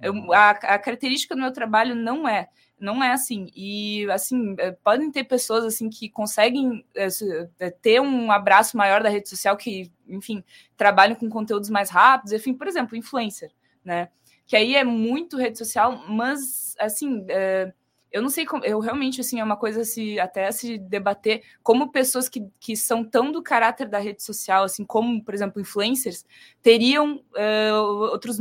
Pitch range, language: 205-260 Hz, Portuguese